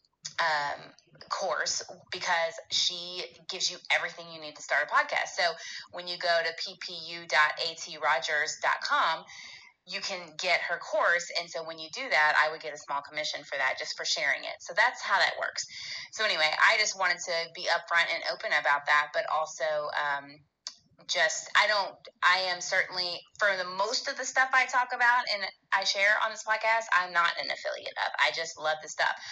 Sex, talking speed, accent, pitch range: female, 190 wpm, American, 155-180 Hz